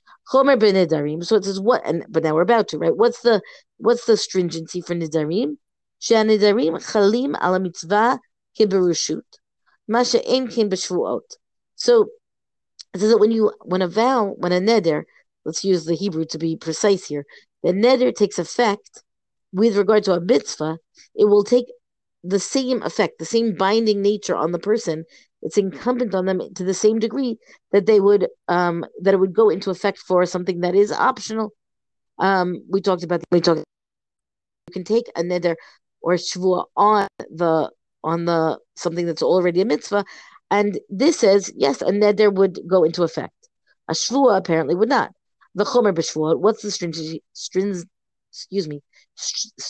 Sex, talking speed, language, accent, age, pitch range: female, 155 wpm, English, American, 40-59, 175-225 Hz